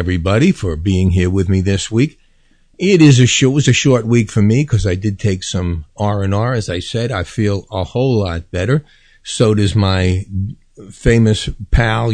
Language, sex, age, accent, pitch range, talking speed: English, male, 50-69, American, 100-125 Hz, 195 wpm